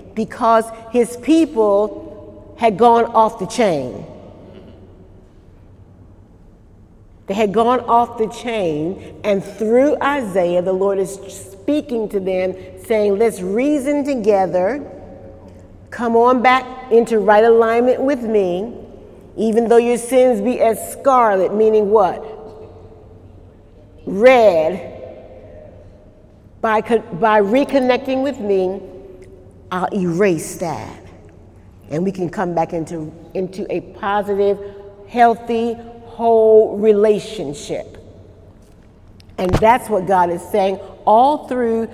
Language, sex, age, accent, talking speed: English, female, 40-59, American, 105 wpm